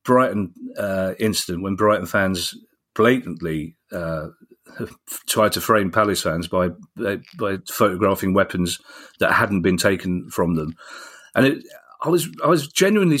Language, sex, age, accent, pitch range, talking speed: English, male, 40-59, British, 95-125 Hz, 135 wpm